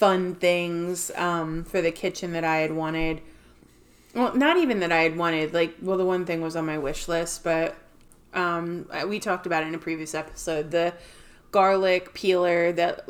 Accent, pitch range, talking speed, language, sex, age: American, 165-180 Hz, 190 wpm, English, female, 20-39